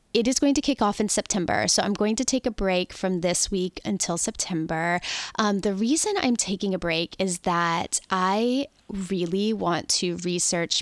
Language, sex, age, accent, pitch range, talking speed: English, female, 10-29, American, 175-215 Hz, 190 wpm